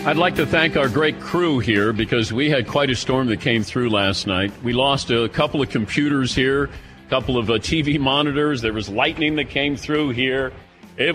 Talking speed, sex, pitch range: 215 wpm, male, 110-140 Hz